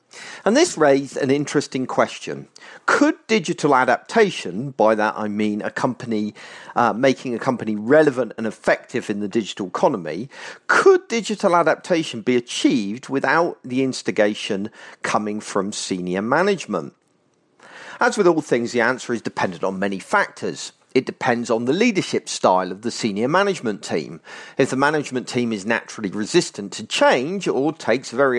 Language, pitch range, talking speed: English, 110-160 Hz, 150 wpm